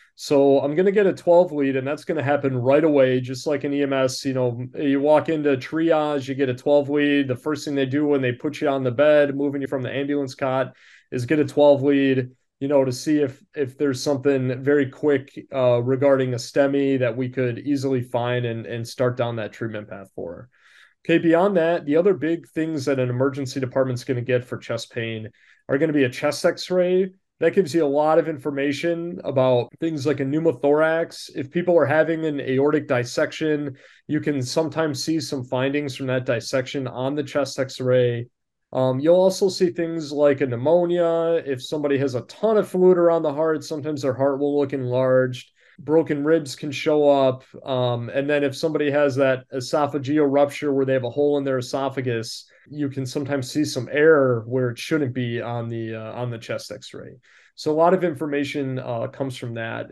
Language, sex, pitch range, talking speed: English, male, 130-150 Hz, 205 wpm